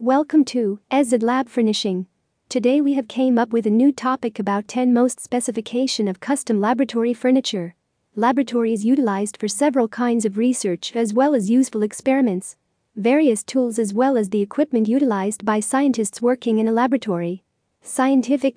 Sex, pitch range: female, 220-260 Hz